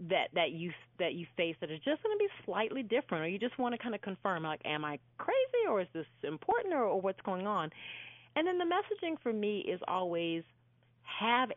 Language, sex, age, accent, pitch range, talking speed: English, female, 30-49, American, 155-220 Hz, 230 wpm